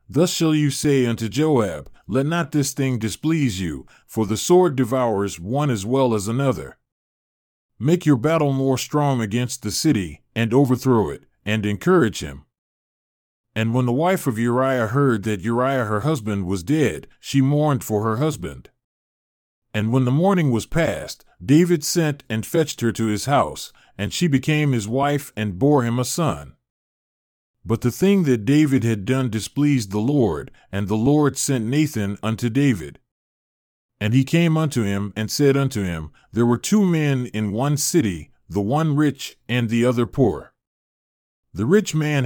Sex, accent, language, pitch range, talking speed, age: male, American, English, 110-145 Hz, 170 wpm, 40-59